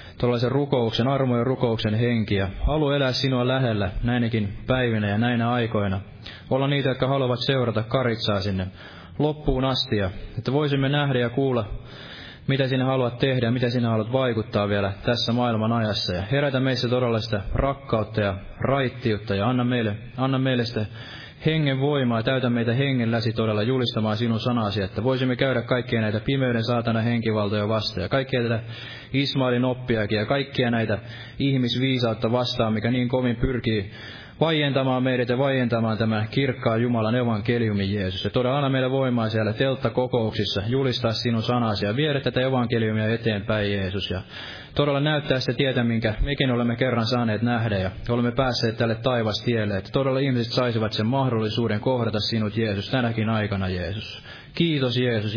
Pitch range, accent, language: 110-130 Hz, native, Finnish